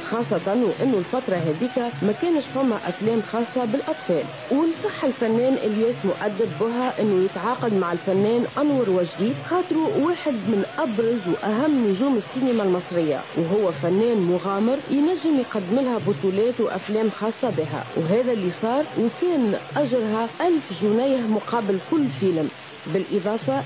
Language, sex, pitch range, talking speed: Italian, female, 200-270 Hz, 125 wpm